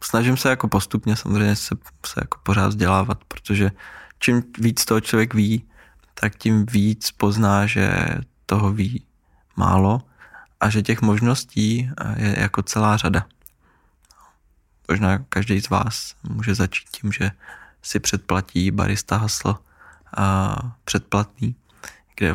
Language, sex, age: Czech, male, 20-39